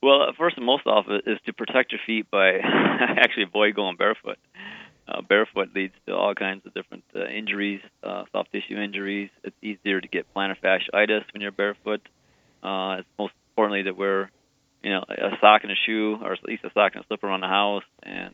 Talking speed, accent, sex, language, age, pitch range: 210 wpm, American, male, English, 30-49, 95-110 Hz